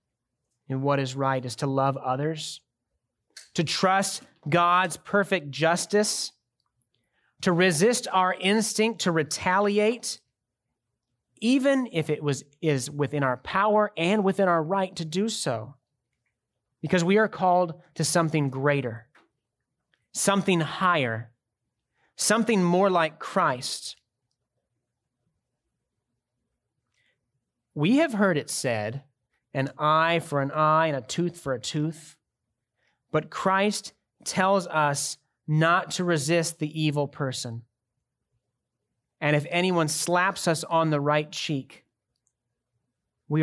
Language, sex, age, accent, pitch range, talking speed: English, male, 30-49, American, 130-180 Hz, 115 wpm